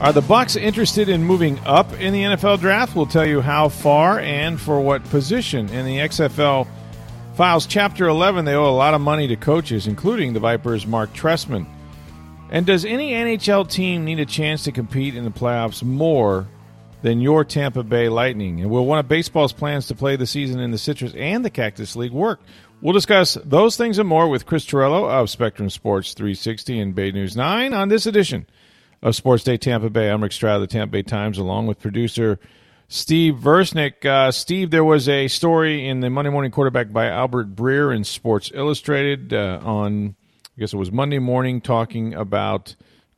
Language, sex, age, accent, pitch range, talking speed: English, male, 40-59, American, 110-155 Hz, 195 wpm